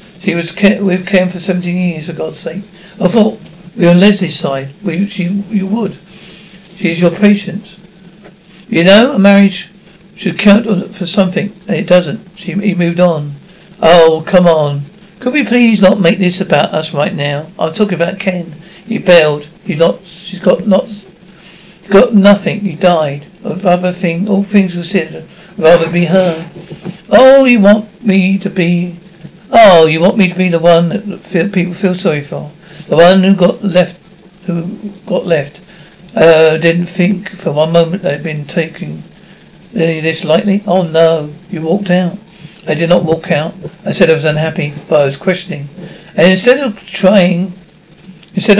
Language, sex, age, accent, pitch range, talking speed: English, male, 60-79, British, 170-195 Hz, 180 wpm